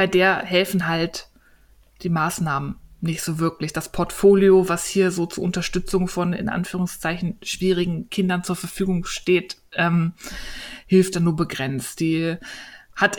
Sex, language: female, German